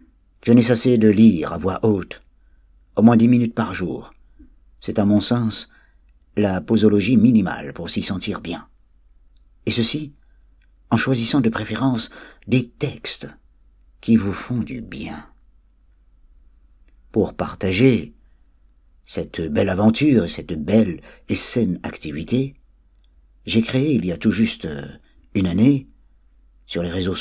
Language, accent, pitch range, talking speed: French, French, 75-115 Hz, 130 wpm